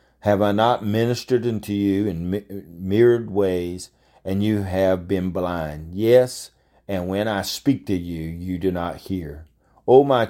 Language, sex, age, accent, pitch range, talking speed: English, male, 50-69, American, 90-110 Hz, 155 wpm